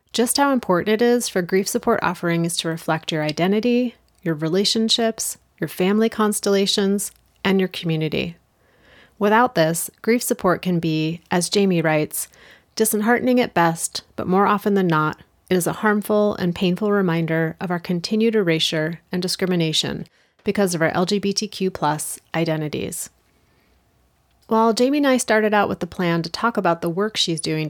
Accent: American